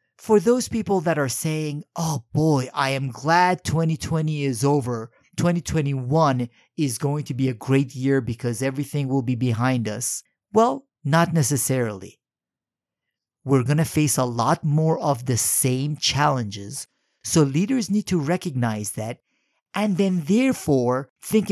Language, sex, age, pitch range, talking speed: English, male, 50-69, 130-170 Hz, 145 wpm